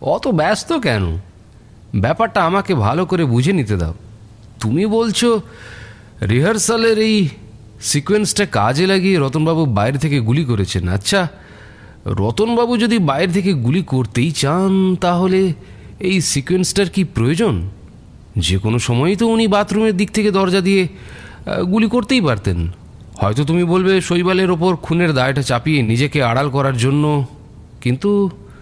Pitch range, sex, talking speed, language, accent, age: 110-185 Hz, male, 105 wpm, Bengali, native, 40-59